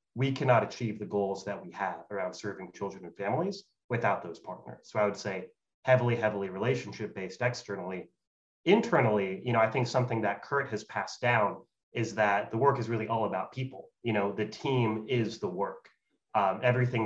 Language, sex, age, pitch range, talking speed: English, male, 30-49, 100-120 Hz, 185 wpm